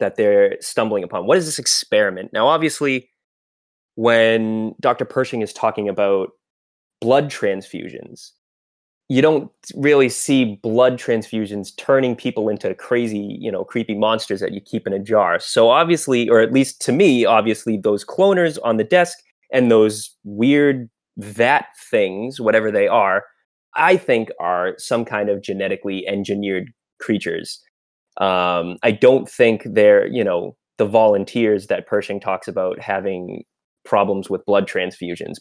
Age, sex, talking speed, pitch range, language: 20-39, male, 145 wpm, 100-130 Hz, English